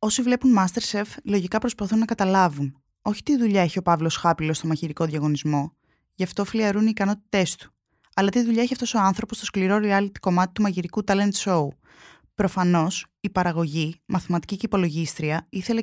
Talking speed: 170 wpm